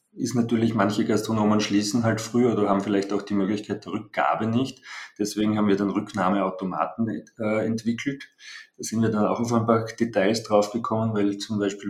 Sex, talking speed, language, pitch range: male, 180 wpm, German, 95-110 Hz